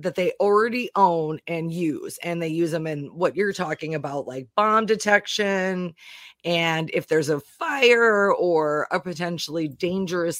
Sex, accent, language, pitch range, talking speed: female, American, English, 165-215 Hz, 155 wpm